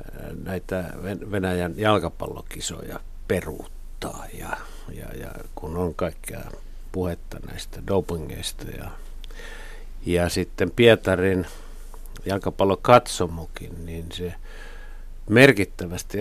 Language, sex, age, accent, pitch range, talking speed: Finnish, male, 60-79, native, 85-110 Hz, 80 wpm